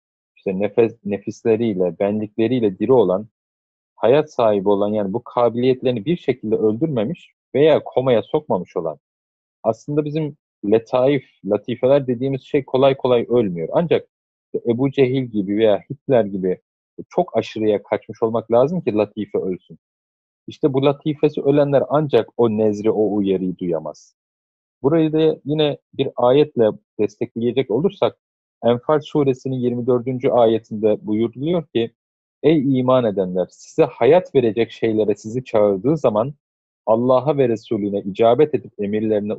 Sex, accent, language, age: male, native, Turkish, 40-59